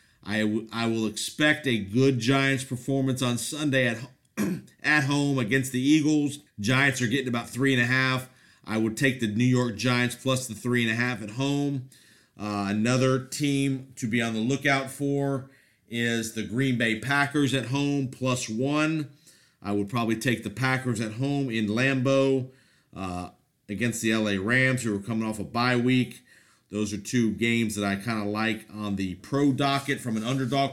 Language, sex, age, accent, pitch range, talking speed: English, male, 50-69, American, 105-135 Hz, 185 wpm